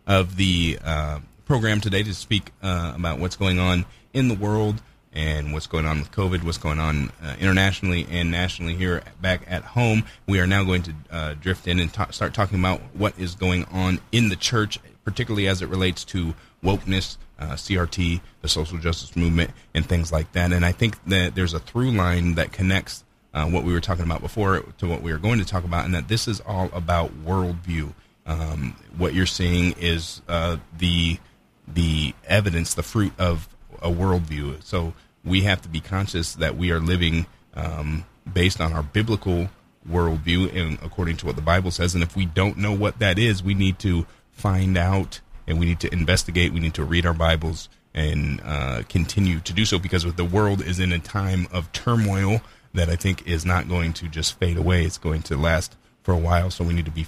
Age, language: 30-49, English